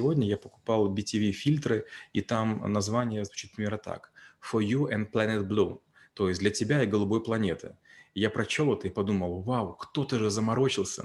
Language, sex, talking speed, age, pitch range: Russian, male, 170 wpm, 30-49, 100-125 Hz